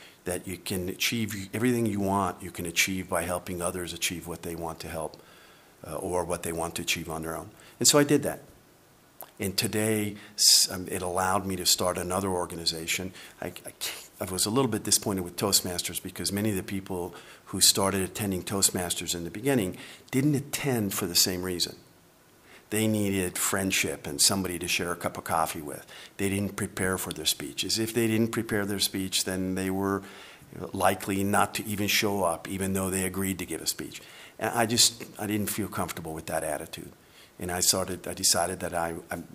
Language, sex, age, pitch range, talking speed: English, male, 50-69, 90-105 Hz, 200 wpm